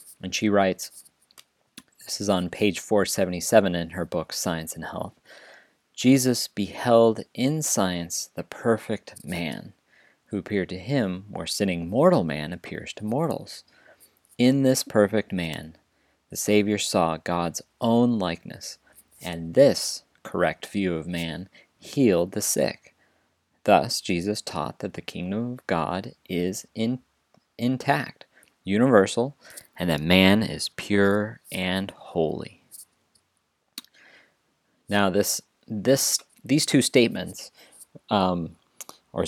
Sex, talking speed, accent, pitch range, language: male, 120 wpm, American, 85-115 Hz, English